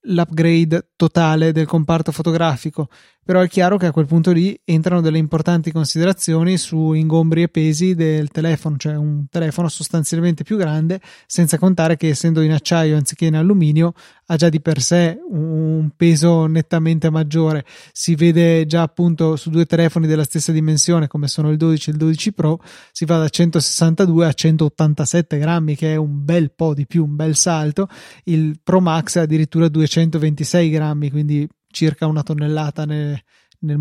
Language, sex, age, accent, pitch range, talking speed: Italian, male, 20-39, native, 155-170 Hz, 165 wpm